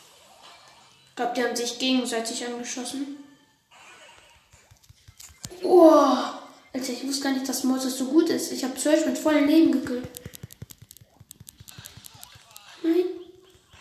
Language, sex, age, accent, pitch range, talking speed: German, female, 10-29, German, 245-310 Hz, 115 wpm